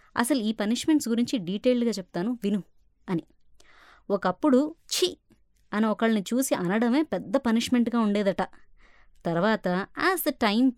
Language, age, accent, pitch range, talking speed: Telugu, 20-39, native, 185-260 Hz, 115 wpm